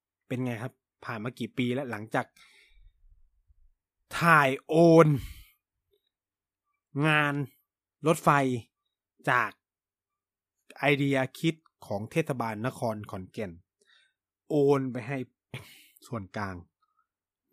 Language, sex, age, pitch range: Thai, male, 20-39, 120-165 Hz